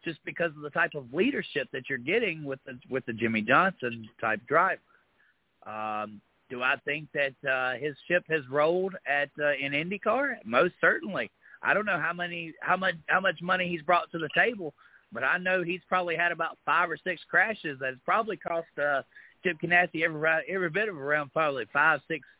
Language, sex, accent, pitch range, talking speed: English, male, American, 135-170 Hz, 200 wpm